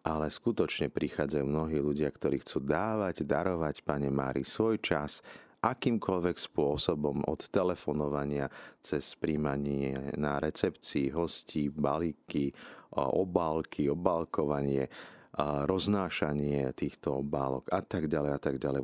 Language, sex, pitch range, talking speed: Slovak, male, 70-85 Hz, 100 wpm